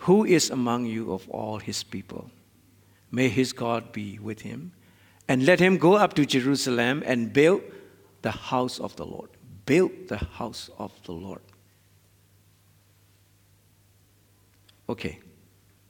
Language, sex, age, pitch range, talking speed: English, male, 60-79, 100-125 Hz, 130 wpm